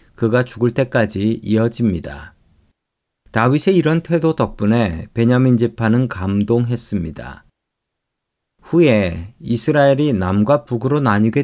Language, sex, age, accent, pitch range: Korean, male, 40-59, native, 105-135 Hz